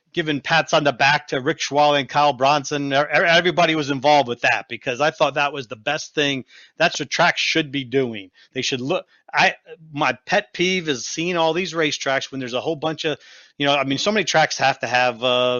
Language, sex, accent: English, male, American